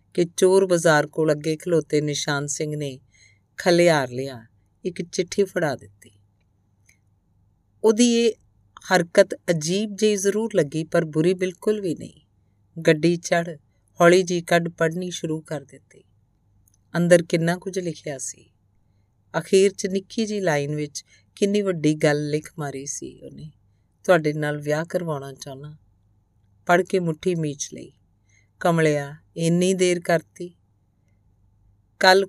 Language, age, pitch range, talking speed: Punjabi, 50-69, 125-175 Hz, 105 wpm